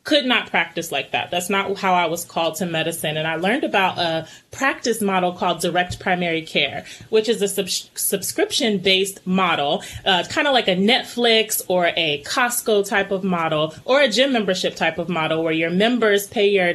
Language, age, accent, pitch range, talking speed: English, 30-49, American, 175-225 Hz, 185 wpm